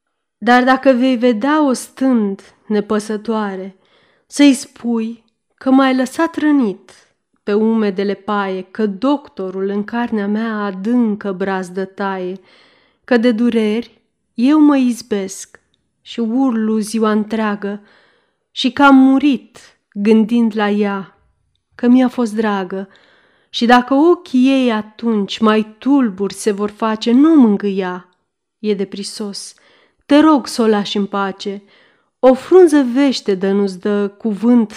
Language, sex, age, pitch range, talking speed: Romanian, female, 30-49, 200-255 Hz, 125 wpm